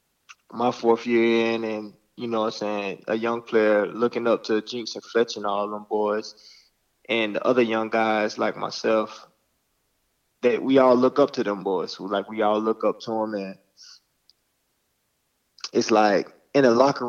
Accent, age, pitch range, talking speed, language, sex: American, 20-39, 110-130 Hz, 185 wpm, English, male